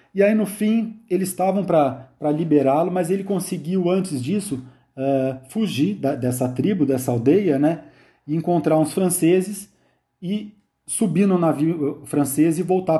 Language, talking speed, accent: Portuguese, 150 wpm, Brazilian